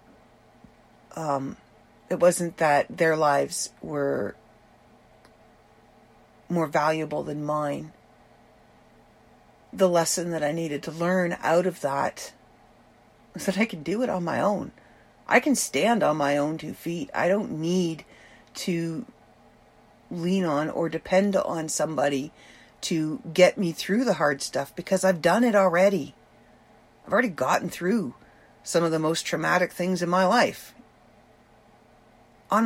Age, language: 40-59, English